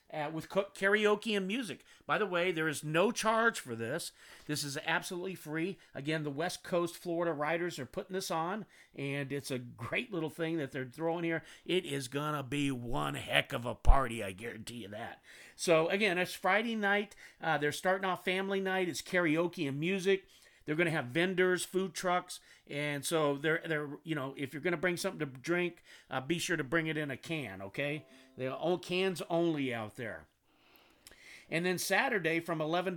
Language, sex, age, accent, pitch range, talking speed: English, male, 50-69, American, 145-175 Hz, 200 wpm